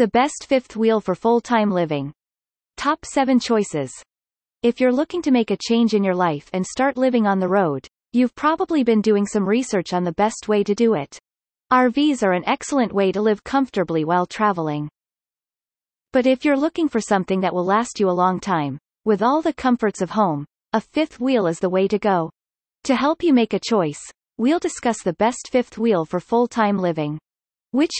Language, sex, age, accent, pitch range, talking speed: English, female, 30-49, American, 185-250 Hz, 195 wpm